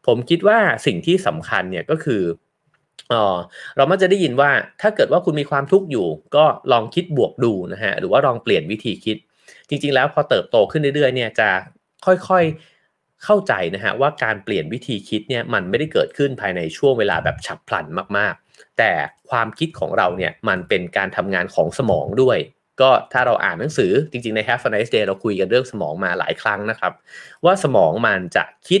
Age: 30-49